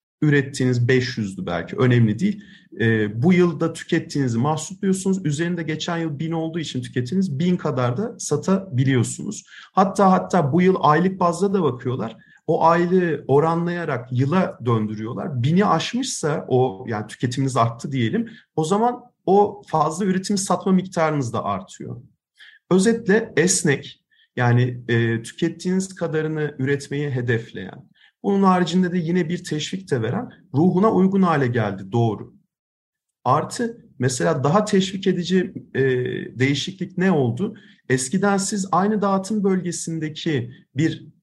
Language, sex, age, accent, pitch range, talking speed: Turkish, male, 40-59, native, 130-190 Hz, 125 wpm